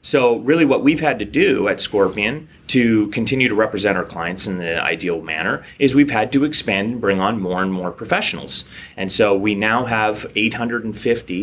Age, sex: 30-49, male